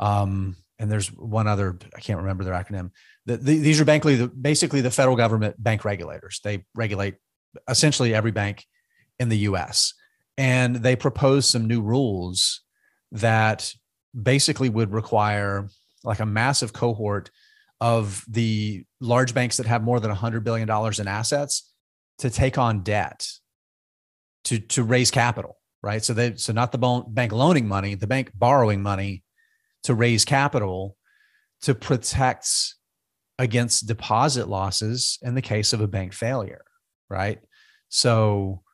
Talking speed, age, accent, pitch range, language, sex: 145 wpm, 30-49, American, 105-130 Hz, English, male